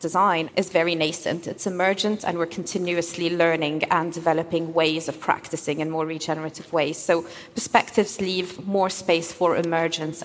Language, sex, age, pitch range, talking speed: English, female, 30-49, 160-185 Hz, 150 wpm